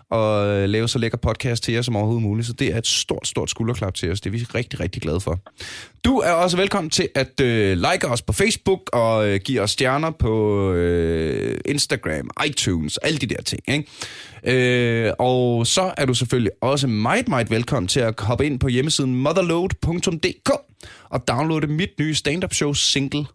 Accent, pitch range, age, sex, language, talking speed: native, 105-145 Hz, 20-39, male, Danish, 180 wpm